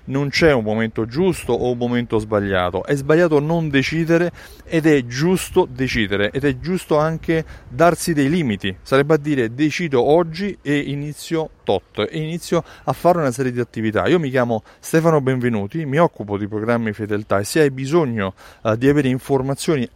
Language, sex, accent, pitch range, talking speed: Italian, male, native, 110-155 Hz, 170 wpm